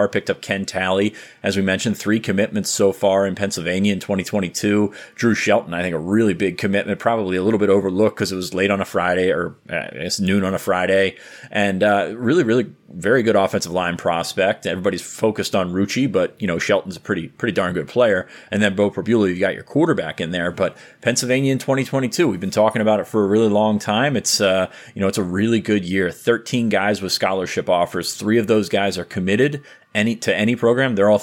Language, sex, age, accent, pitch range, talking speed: English, male, 30-49, American, 95-110 Hz, 225 wpm